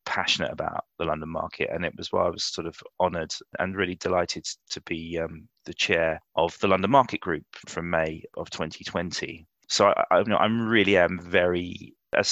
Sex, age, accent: male, 30-49, British